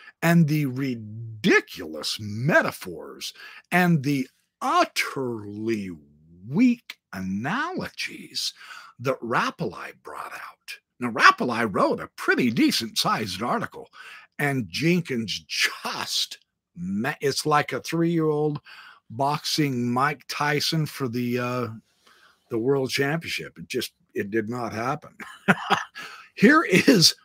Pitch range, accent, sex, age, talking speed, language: 125-200 Hz, American, male, 50-69, 100 wpm, English